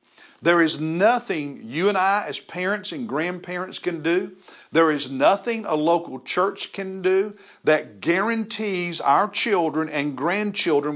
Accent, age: American, 50-69